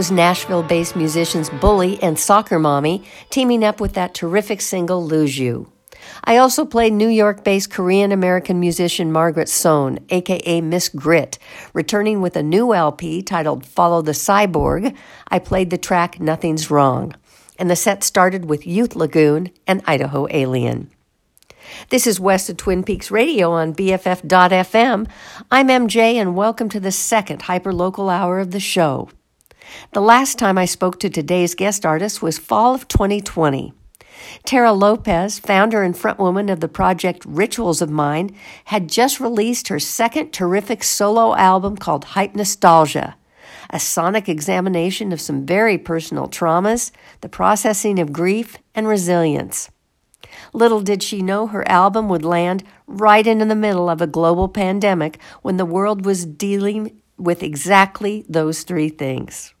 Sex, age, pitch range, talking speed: female, 60-79, 170-210 Hz, 150 wpm